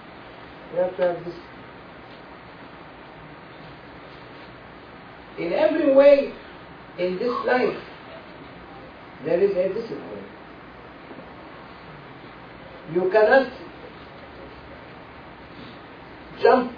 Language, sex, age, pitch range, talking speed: English, male, 50-69, 175-255 Hz, 65 wpm